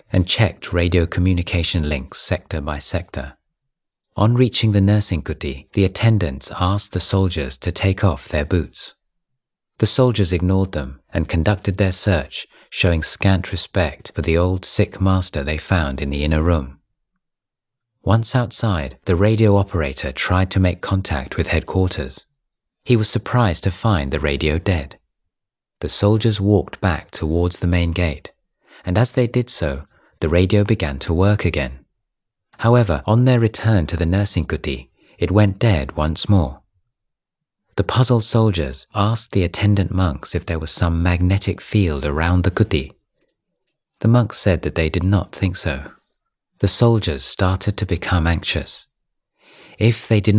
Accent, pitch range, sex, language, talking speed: British, 80-105 Hz, male, English, 155 wpm